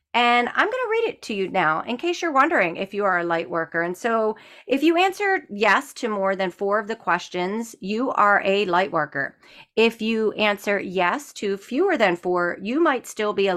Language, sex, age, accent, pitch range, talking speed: English, female, 40-59, American, 185-235 Hz, 215 wpm